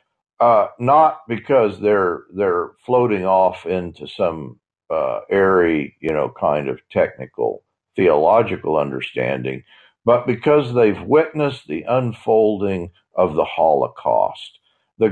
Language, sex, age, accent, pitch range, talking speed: English, male, 50-69, American, 105-150 Hz, 110 wpm